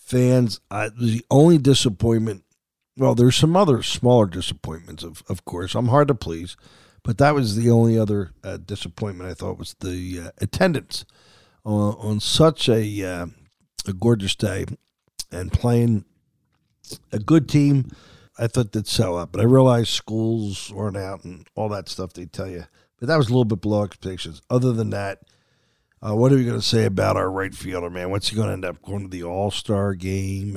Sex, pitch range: male, 90-120 Hz